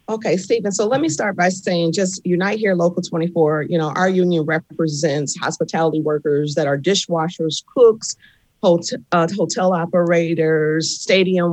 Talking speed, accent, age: 150 wpm, American, 40-59